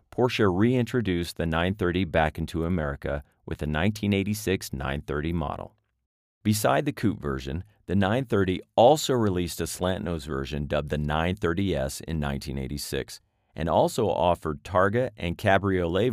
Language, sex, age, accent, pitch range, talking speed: English, male, 40-59, American, 75-105 Hz, 130 wpm